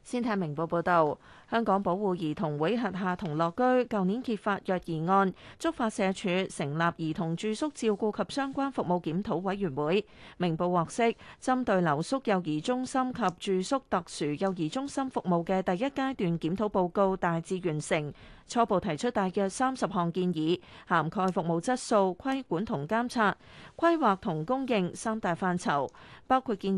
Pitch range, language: 175-235 Hz, Chinese